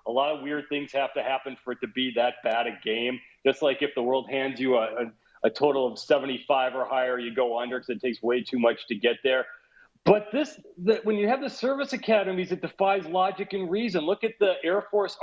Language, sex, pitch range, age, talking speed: English, male, 135-210 Hz, 40-59, 235 wpm